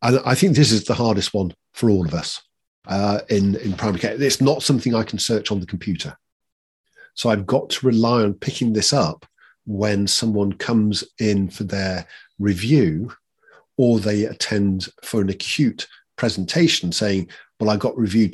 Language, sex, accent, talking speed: English, male, British, 175 wpm